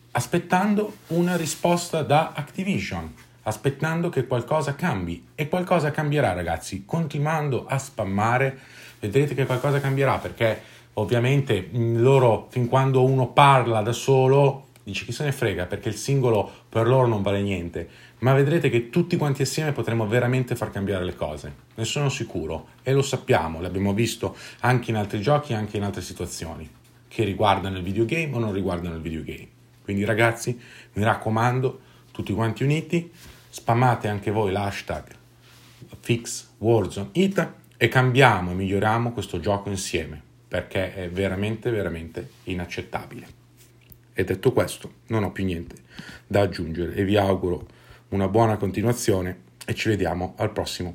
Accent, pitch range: native, 100-135 Hz